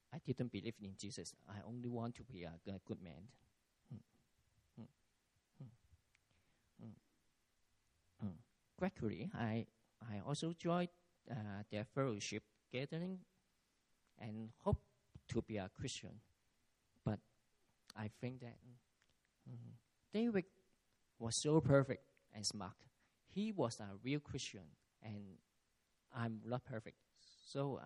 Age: 40-59